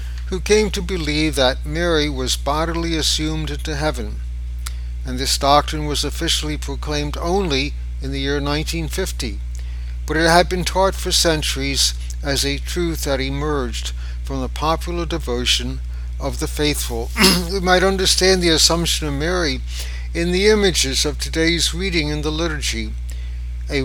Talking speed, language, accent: 145 wpm, English, American